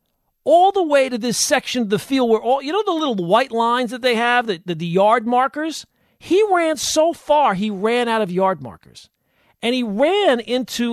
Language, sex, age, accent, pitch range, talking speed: English, male, 40-59, American, 180-250 Hz, 210 wpm